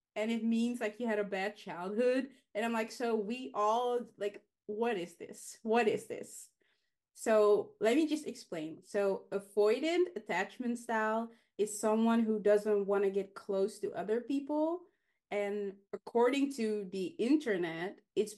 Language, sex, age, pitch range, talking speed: English, female, 20-39, 195-230 Hz, 155 wpm